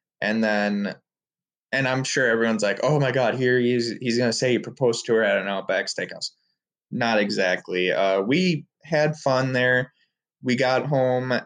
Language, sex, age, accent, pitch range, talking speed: English, male, 20-39, American, 100-125 Hz, 180 wpm